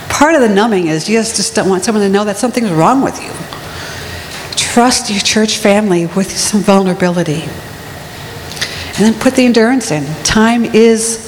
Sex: female